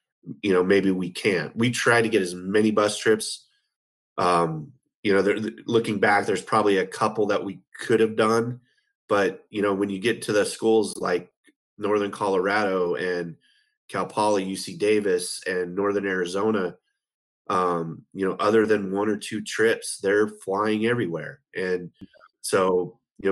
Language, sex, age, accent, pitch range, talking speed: English, male, 30-49, American, 95-120 Hz, 160 wpm